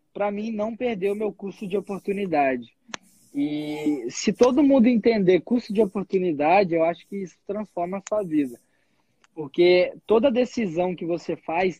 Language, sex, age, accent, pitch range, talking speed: Portuguese, male, 20-39, Brazilian, 160-200 Hz, 160 wpm